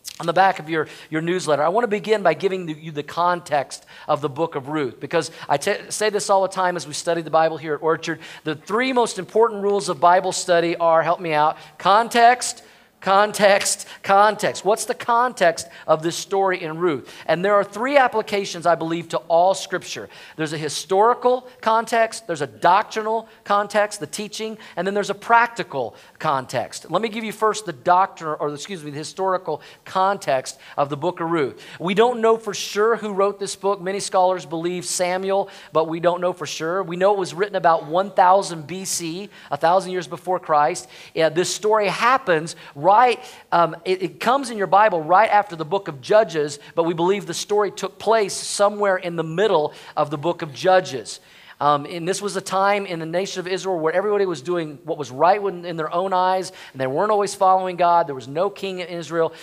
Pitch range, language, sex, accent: 160-200 Hz, English, male, American